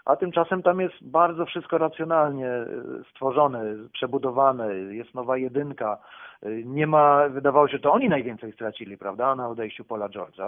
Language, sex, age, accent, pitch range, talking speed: Polish, male, 40-59, native, 125-165 Hz, 150 wpm